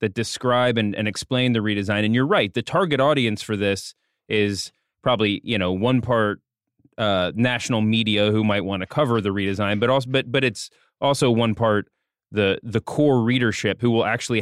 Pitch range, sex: 105-125 Hz, male